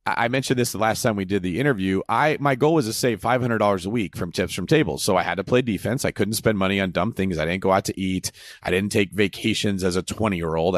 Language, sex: English, male